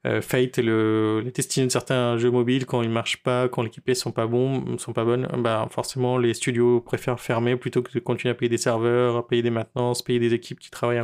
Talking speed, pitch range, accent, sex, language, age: 230 wpm, 115-130 Hz, French, male, French, 20-39